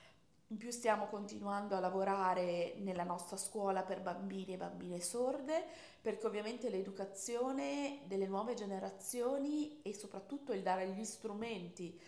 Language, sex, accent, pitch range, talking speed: Italian, female, native, 190-225 Hz, 130 wpm